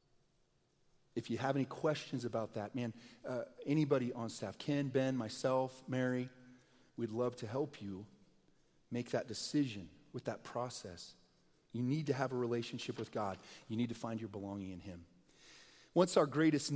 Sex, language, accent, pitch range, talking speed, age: male, English, American, 130-195 Hz, 165 wpm, 40-59